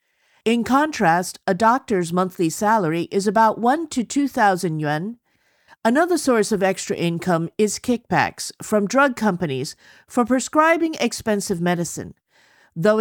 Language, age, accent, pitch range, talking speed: English, 50-69, American, 165-230 Hz, 125 wpm